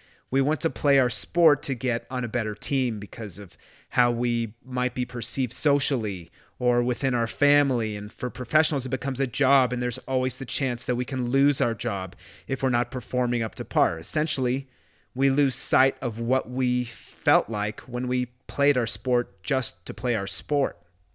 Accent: American